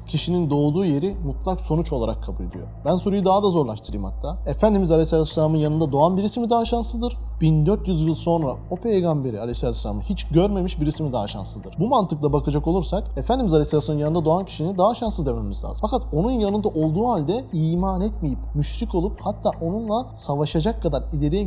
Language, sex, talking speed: Turkish, male, 170 wpm